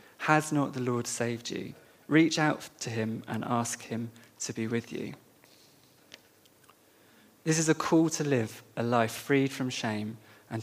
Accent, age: British, 20-39